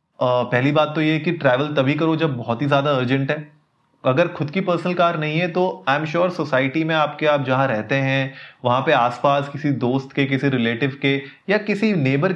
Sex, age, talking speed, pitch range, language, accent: male, 30-49, 220 wpm, 125-155 Hz, Hindi, native